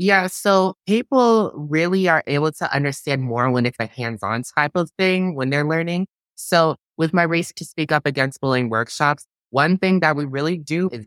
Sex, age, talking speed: male, 20-39, 200 wpm